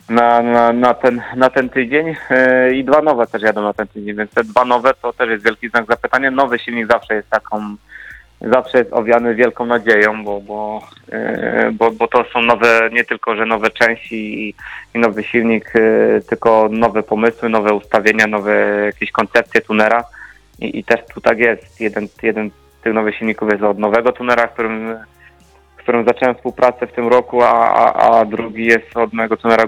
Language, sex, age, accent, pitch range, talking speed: Polish, male, 20-39, native, 110-120 Hz, 190 wpm